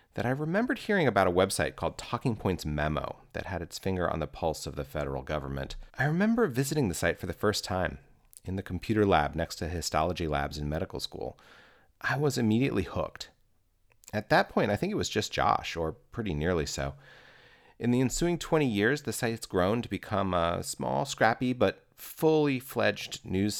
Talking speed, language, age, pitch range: 190 wpm, English, 30-49, 80-115 Hz